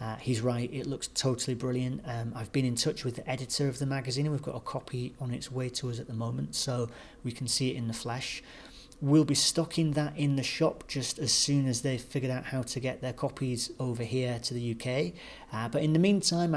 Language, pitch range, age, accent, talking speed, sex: English, 120-150 Hz, 40-59, British, 245 wpm, male